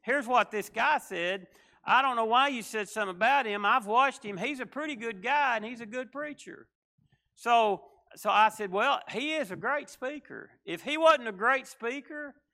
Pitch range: 195-255 Hz